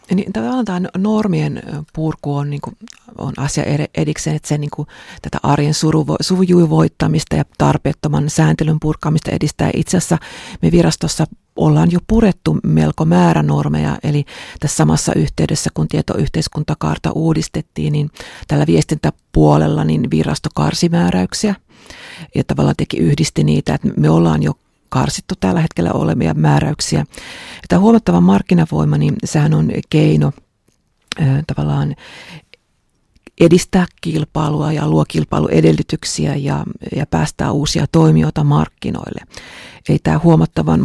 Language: Finnish